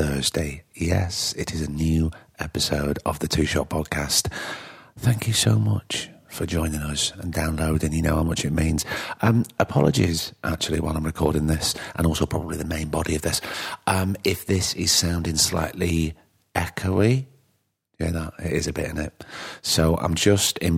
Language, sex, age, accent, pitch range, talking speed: English, male, 40-59, British, 80-95 Hz, 180 wpm